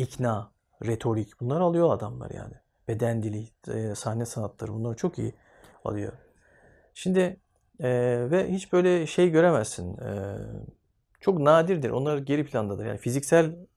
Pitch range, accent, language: 110-140 Hz, native, Turkish